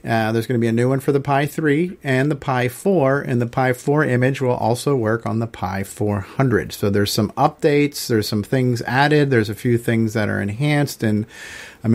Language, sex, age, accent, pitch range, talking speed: English, male, 40-59, American, 115-135 Hz, 225 wpm